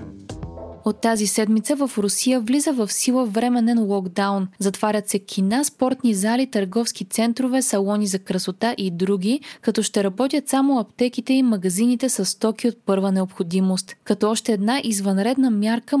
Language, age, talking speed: Bulgarian, 20-39, 145 wpm